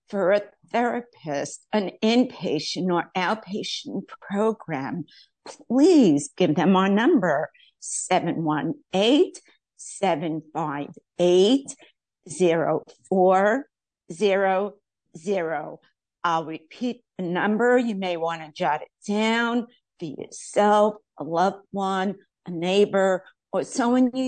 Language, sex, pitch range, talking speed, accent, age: English, female, 175-230 Hz, 85 wpm, American, 50-69